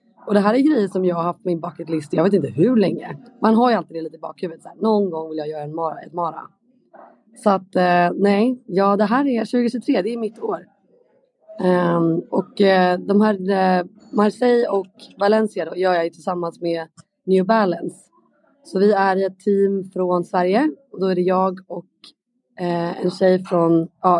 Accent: native